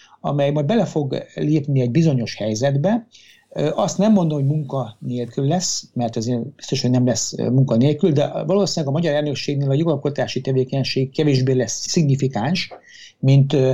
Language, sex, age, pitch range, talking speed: Hungarian, male, 60-79, 125-155 Hz, 155 wpm